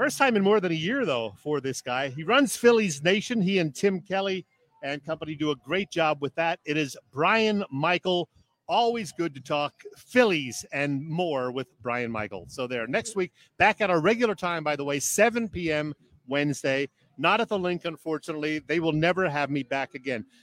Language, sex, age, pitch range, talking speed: English, male, 50-69, 150-205 Hz, 200 wpm